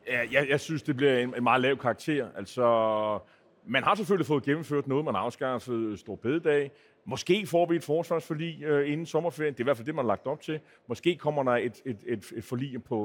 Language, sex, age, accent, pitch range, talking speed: Danish, male, 40-59, native, 125-165 Hz, 225 wpm